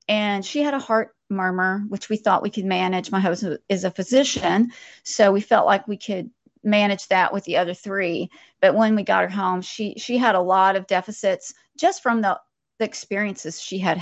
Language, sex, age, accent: English, female, 40-59, American